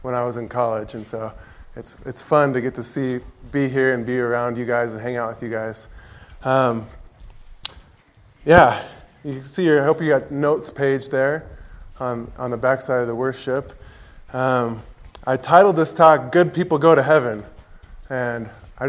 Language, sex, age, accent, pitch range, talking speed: English, male, 20-39, American, 120-155 Hz, 190 wpm